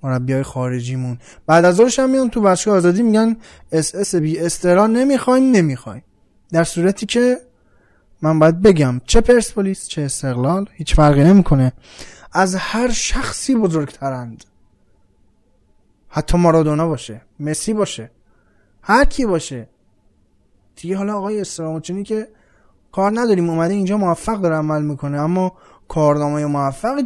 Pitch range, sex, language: 130-195 Hz, male, Persian